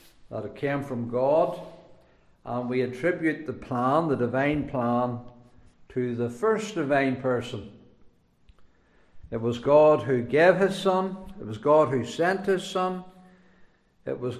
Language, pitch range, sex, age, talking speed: English, 130-185 Hz, male, 60-79, 140 wpm